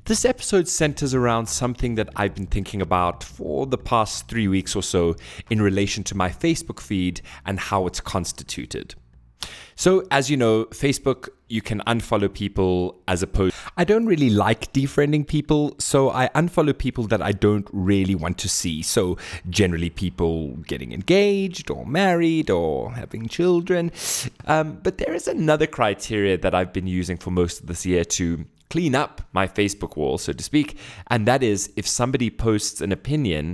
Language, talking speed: English, 175 wpm